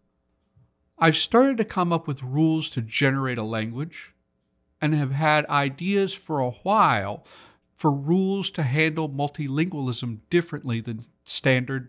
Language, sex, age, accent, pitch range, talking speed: English, male, 50-69, American, 115-165 Hz, 130 wpm